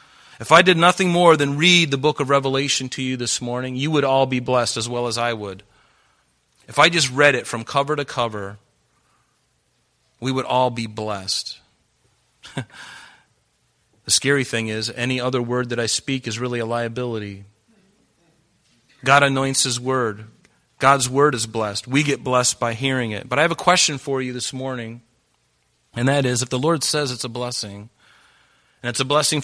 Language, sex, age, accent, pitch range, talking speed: English, male, 40-59, American, 120-150 Hz, 185 wpm